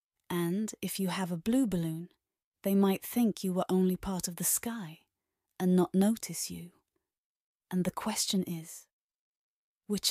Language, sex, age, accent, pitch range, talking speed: English, female, 30-49, British, 185-240 Hz, 155 wpm